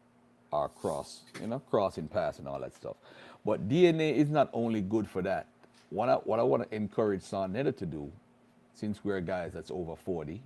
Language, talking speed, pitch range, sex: English, 200 wpm, 90-110 Hz, male